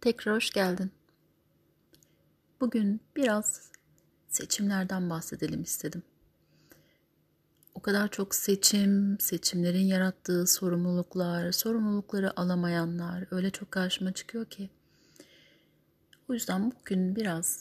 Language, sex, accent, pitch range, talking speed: Turkish, female, native, 170-220 Hz, 90 wpm